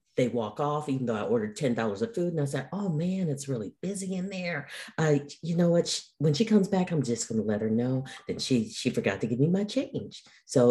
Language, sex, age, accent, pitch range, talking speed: English, female, 50-69, American, 120-175 Hz, 260 wpm